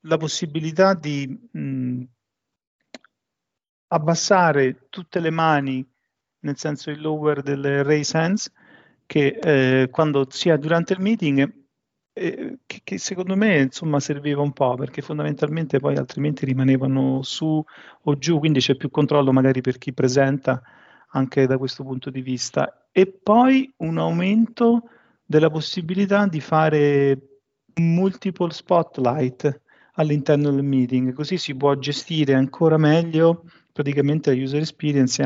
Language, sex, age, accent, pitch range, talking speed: Italian, male, 40-59, native, 130-155 Hz, 130 wpm